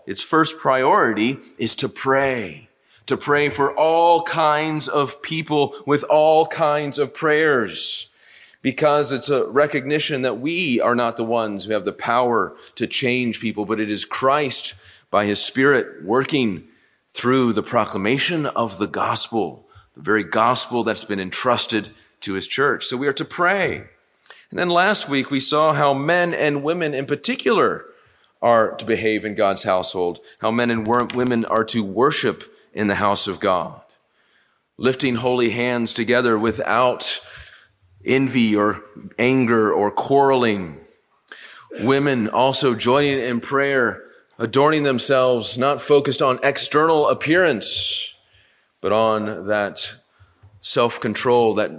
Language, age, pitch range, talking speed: English, 30-49, 110-145 Hz, 140 wpm